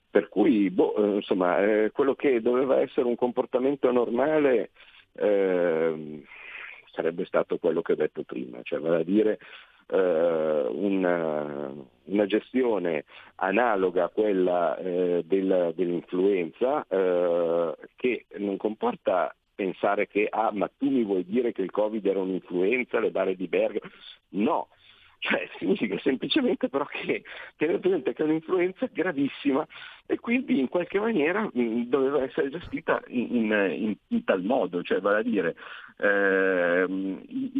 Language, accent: Italian, native